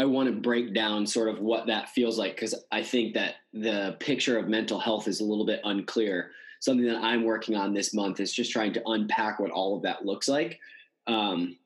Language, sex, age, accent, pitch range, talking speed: English, male, 20-39, American, 105-130 Hz, 225 wpm